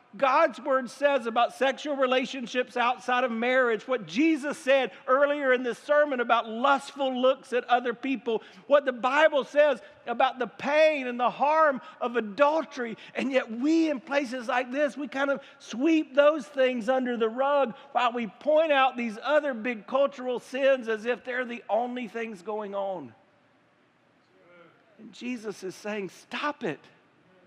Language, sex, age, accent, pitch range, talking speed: English, male, 50-69, American, 235-290 Hz, 160 wpm